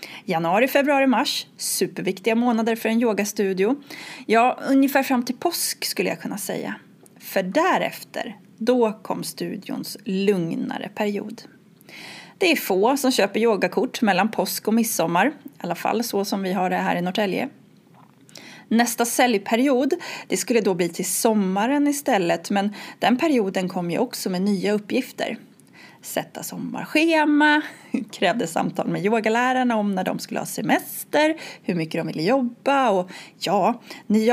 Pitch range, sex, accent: 195-260 Hz, female, native